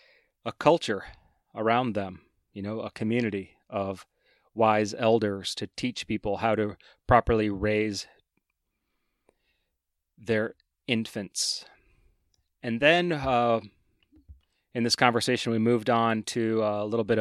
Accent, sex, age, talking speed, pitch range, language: American, male, 30-49, 115 wpm, 100-120 Hz, English